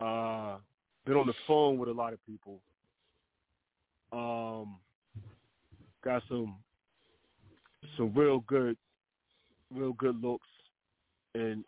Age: 30-49